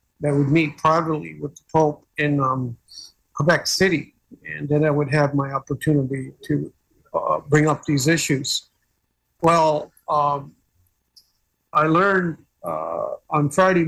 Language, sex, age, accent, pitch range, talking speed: English, male, 50-69, American, 145-160 Hz, 135 wpm